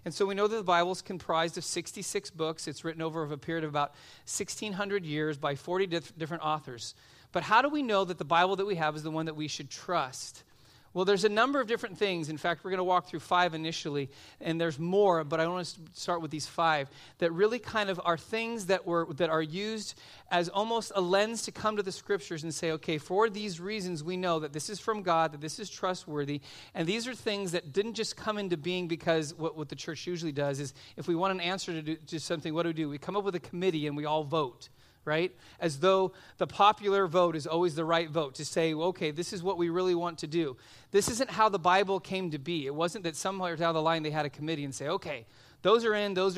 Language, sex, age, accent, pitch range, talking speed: English, male, 40-59, American, 155-190 Hz, 255 wpm